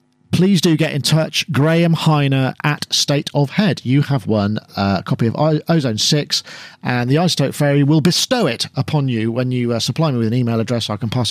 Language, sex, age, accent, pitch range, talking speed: English, male, 40-59, British, 125-175 Hz, 220 wpm